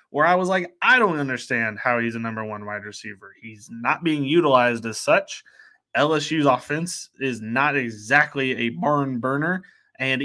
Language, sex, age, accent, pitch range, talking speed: English, male, 20-39, American, 120-170 Hz, 170 wpm